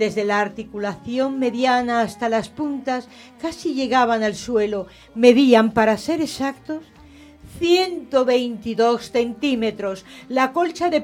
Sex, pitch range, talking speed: female, 205-285 Hz, 110 wpm